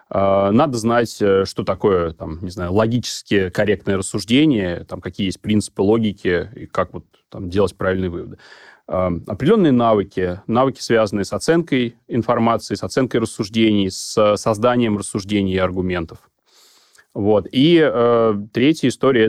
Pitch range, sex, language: 95-115 Hz, male, Russian